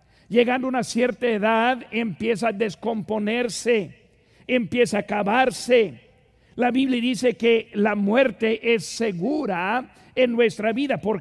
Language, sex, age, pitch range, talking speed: Spanish, male, 50-69, 205-250 Hz, 125 wpm